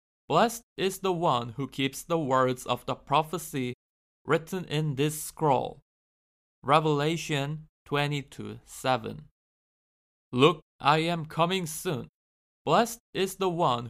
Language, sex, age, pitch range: Korean, male, 20-39, 130-165 Hz